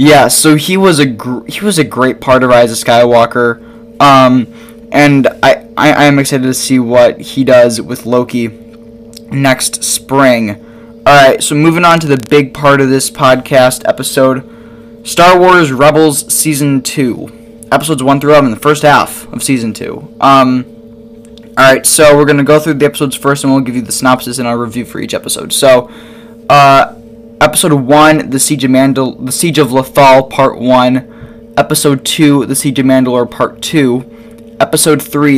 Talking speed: 180 wpm